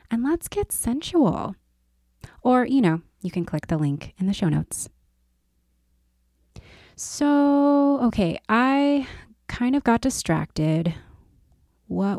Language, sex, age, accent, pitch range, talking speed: English, female, 20-39, American, 155-220 Hz, 120 wpm